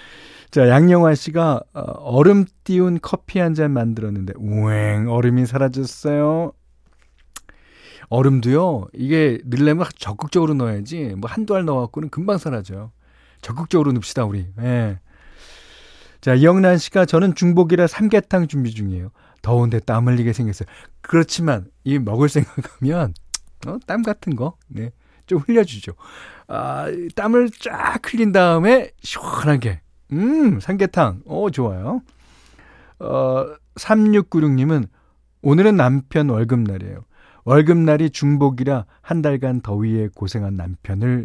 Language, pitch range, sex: Korean, 105-160 Hz, male